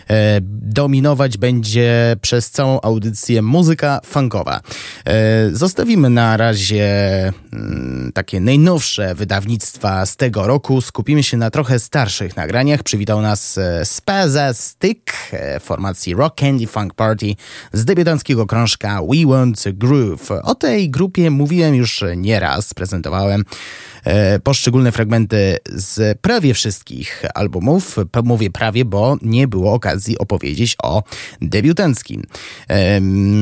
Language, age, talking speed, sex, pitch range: Polish, 20-39, 110 wpm, male, 100-135 Hz